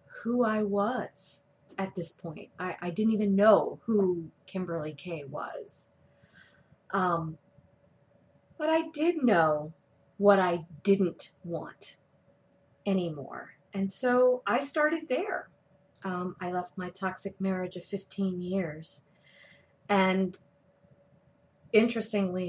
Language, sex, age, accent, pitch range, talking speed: English, female, 30-49, American, 165-200 Hz, 110 wpm